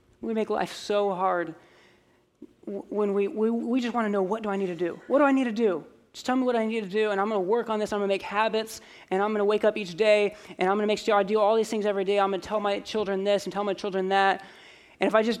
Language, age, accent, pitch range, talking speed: English, 20-39, American, 185-215 Hz, 315 wpm